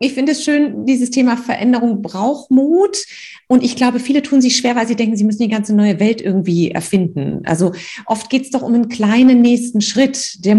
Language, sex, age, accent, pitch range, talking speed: German, female, 30-49, German, 200-245 Hz, 215 wpm